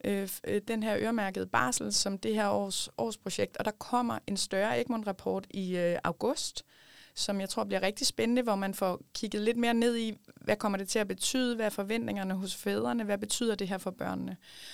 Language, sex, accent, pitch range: Danish, female, native, 190-225 Hz